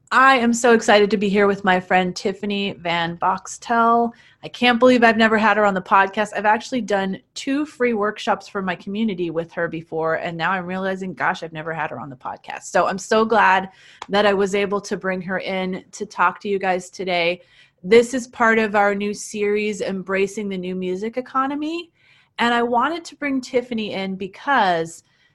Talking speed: 200 wpm